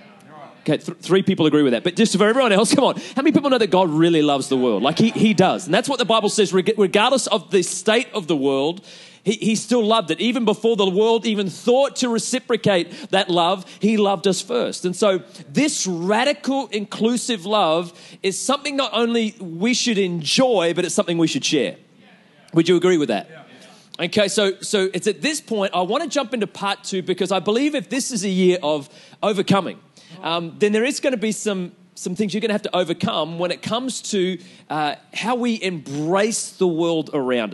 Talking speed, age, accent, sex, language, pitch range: 215 wpm, 30-49, Australian, male, English, 175-220 Hz